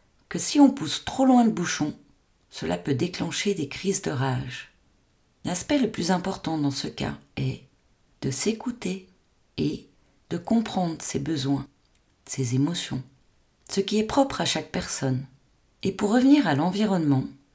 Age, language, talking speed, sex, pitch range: 40-59, French, 150 wpm, female, 140-205 Hz